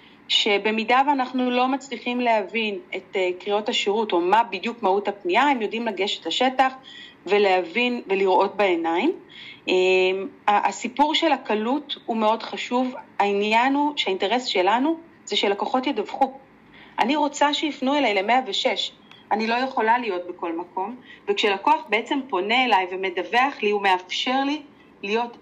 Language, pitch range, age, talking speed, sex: Hebrew, 200-265 Hz, 40-59, 125 wpm, female